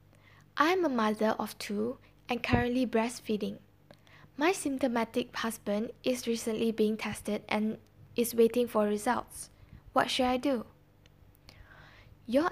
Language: English